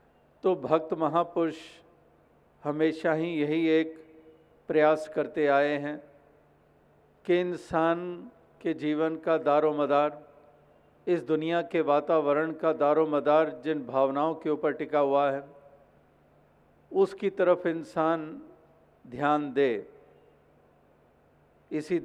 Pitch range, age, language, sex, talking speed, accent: 150-165 Hz, 50-69, Hindi, male, 100 wpm, native